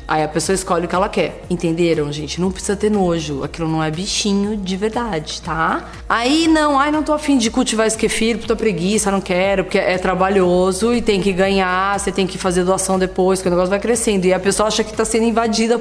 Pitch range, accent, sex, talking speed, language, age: 185-230 Hz, Brazilian, female, 230 wpm, Portuguese, 20-39